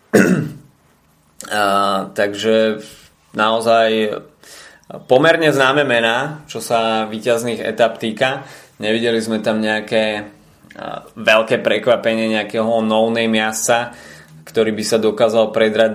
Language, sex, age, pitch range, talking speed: Slovak, male, 20-39, 110-115 Hz, 100 wpm